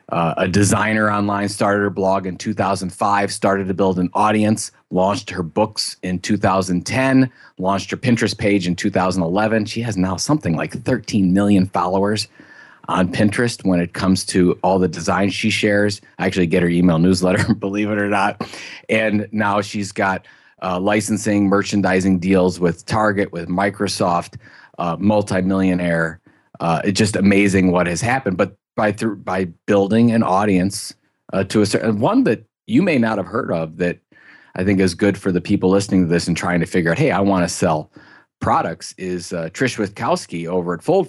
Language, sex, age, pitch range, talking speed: English, male, 30-49, 90-105 Hz, 180 wpm